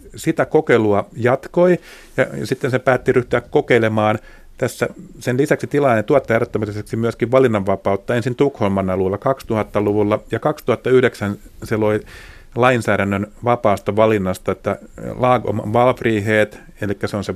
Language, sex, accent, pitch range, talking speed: Finnish, male, native, 105-135 Hz, 115 wpm